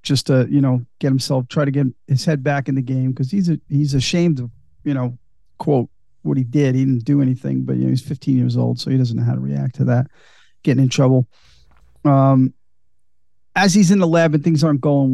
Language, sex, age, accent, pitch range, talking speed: English, male, 40-59, American, 125-145 Hz, 240 wpm